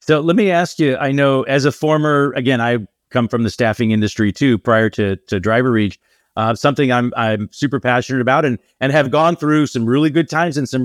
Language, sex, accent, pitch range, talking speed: English, male, American, 110-140 Hz, 225 wpm